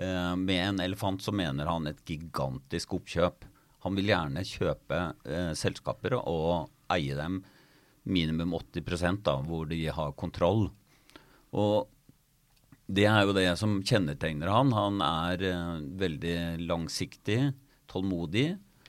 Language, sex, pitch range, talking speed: English, male, 85-120 Hz, 125 wpm